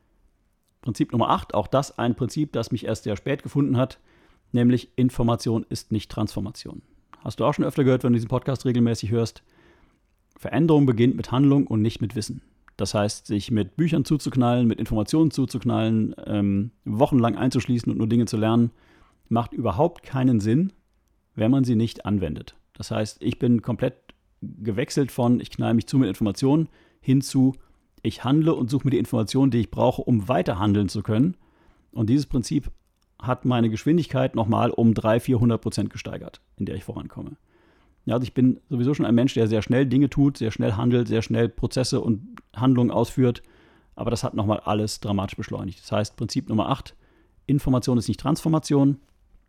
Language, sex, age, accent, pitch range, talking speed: German, male, 40-59, German, 110-130 Hz, 180 wpm